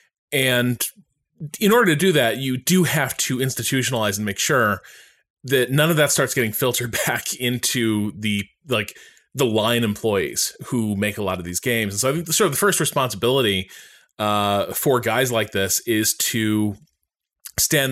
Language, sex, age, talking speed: English, male, 20-39, 175 wpm